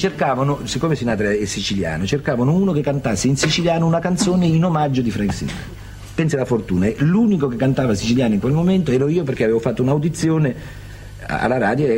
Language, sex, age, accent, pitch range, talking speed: Italian, male, 50-69, native, 100-140 Hz, 180 wpm